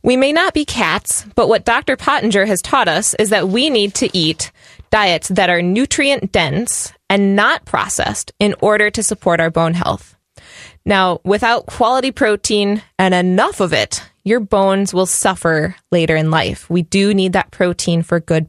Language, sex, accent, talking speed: English, female, American, 175 wpm